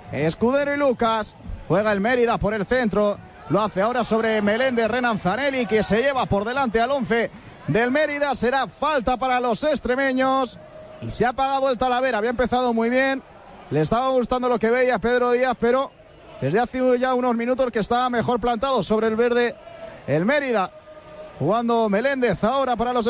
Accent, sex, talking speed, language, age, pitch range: Spanish, male, 175 wpm, Spanish, 30-49, 220-275 Hz